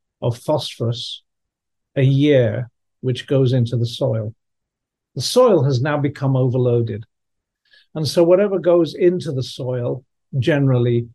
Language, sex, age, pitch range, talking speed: English, male, 50-69, 125-150 Hz, 125 wpm